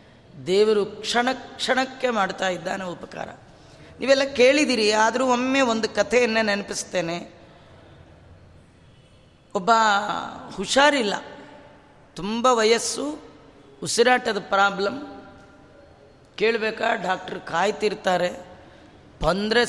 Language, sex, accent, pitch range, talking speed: Kannada, female, native, 185-235 Hz, 70 wpm